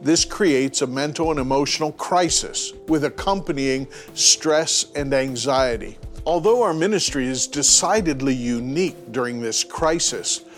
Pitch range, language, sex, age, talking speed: 130-180 Hz, English, male, 50-69, 120 wpm